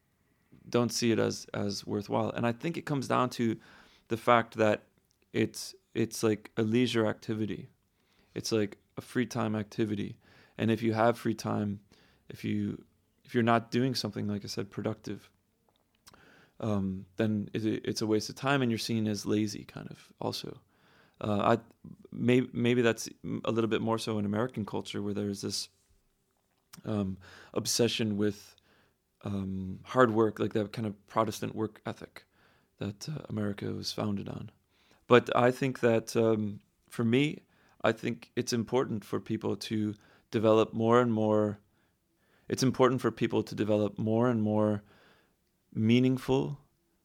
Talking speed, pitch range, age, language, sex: 160 wpm, 105-115 Hz, 30-49, English, male